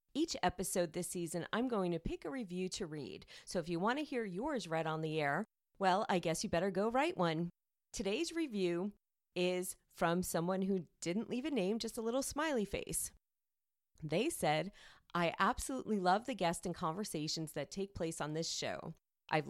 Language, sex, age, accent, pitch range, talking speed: English, female, 40-59, American, 170-215 Hz, 195 wpm